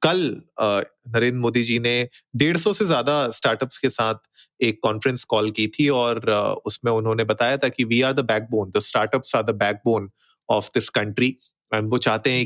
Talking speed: 175 wpm